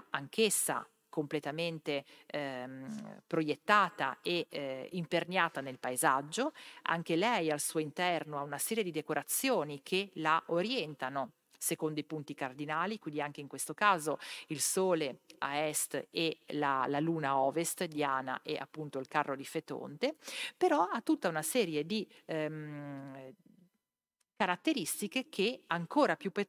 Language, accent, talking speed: Italian, native, 130 wpm